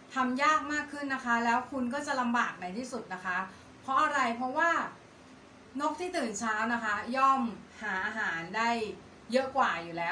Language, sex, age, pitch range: Thai, female, 30-49, 210-260 Hz